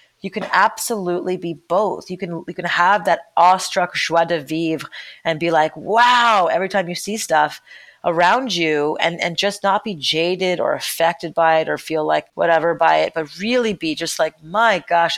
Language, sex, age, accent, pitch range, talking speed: English, female, 30-49, American, 160-195 Hz, 195 wpm